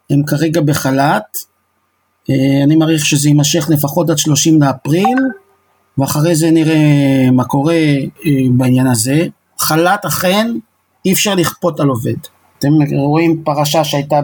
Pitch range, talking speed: 135-170 Hz, 120 wpm